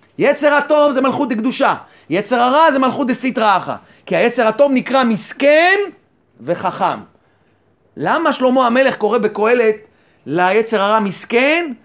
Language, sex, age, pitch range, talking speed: Hebrew, male, 40-59, 225-295 Hz, 130 wpm